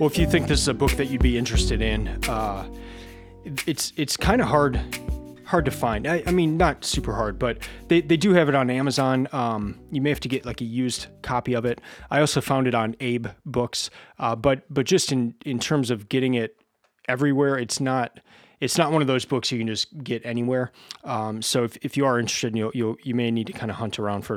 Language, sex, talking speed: English, male, 240 wpm